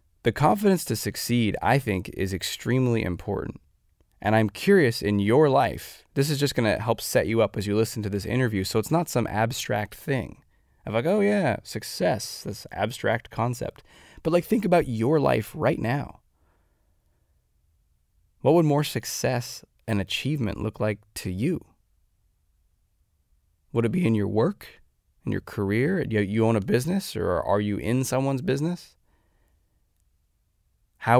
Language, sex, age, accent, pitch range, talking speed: English, male, 20-39, American, 100-135 Hz, 160 wpm